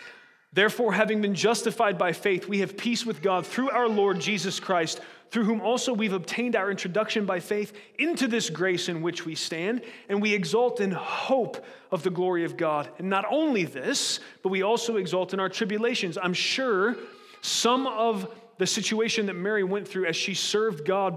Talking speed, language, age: 190 wpm, English, 30-49